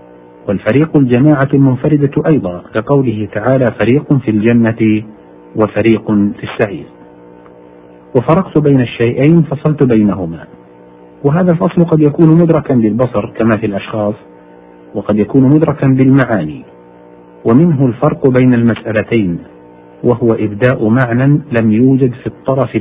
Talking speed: 110 wpm